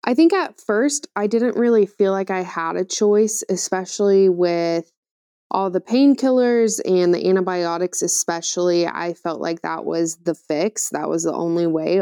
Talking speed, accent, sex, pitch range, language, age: 170 wpm, American, female, 170-205 Hz, English, 20-39